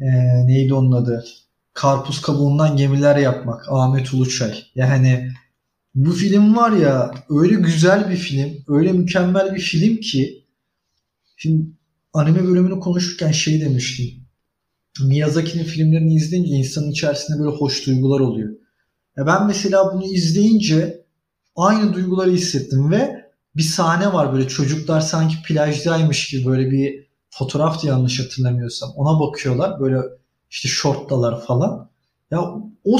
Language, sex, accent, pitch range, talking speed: Turkish, male, native, 135-180 Hz, 125 wpm